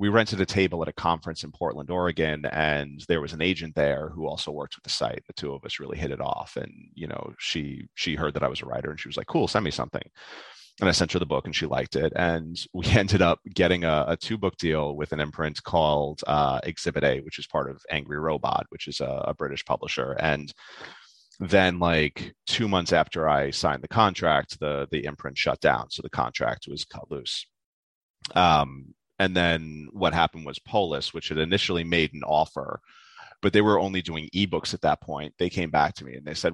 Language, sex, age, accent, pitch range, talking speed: English, male, 30-49, American, 75-95 Hz, 230 wpm